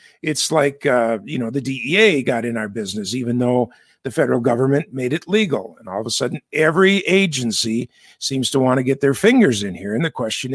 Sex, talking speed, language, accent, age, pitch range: male, 215 wpm, English, American, 50-69, 125-165 Hz